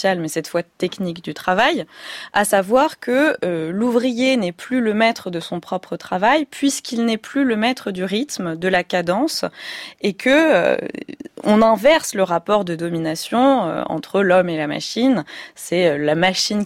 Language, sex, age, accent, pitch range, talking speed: French, female, 20-39, French, 175-240 Hz, 175 wpm